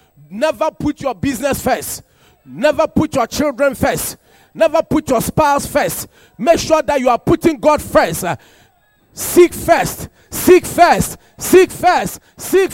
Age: 40-59